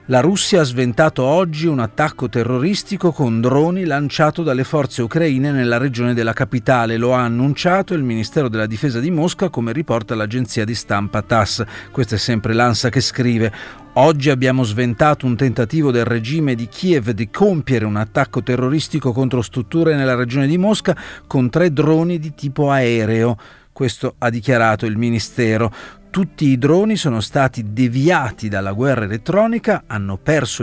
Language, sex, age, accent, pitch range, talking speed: Italian, male, 40-59, native, 115-150 Hz, 160 wpm